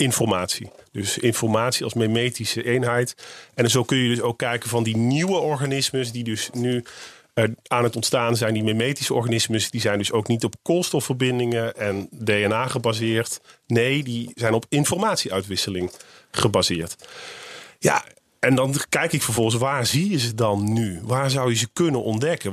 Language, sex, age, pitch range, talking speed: Dutch, male, 40-59, 115-145 Hz, 160 wpm